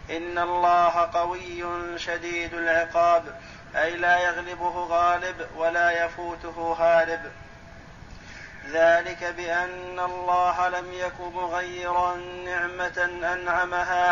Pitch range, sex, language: 175-180 Hz, male, Arabic